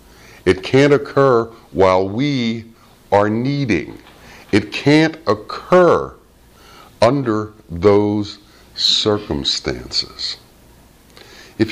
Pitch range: 80-120 Hz